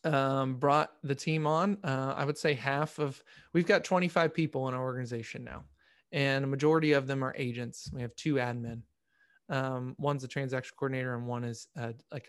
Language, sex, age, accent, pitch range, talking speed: English, male, 20-39, American, 135-155 Hz, 195 wpm